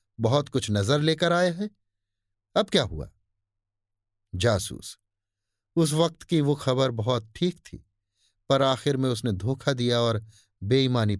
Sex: male